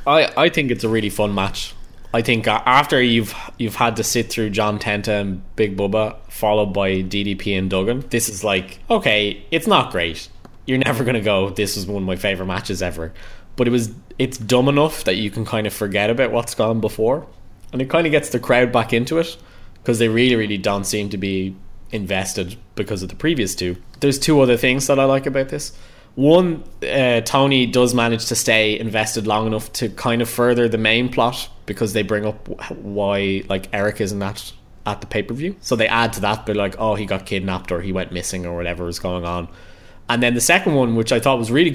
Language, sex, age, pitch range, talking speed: English, male, 20-39, 95-120 Hz, 220 wpm